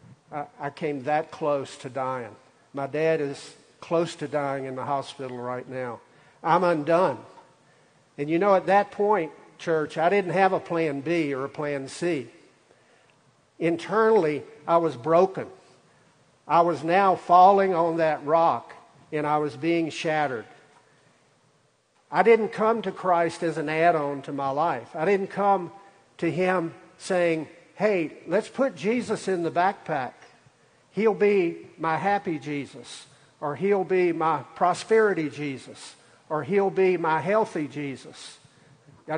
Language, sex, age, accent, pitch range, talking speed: English, male, 50-69, American, 145-190 Hz, 145 wpm